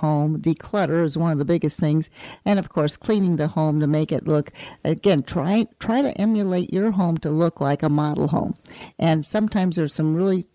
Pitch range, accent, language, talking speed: 160-195 Hz, American, English, 205 wpm